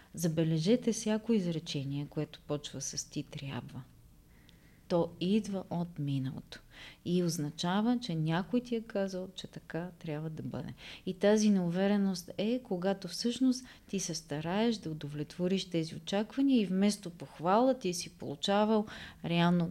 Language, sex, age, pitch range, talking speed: Bulgarian, female, 30-49, 150-195 Hz, 135 wpm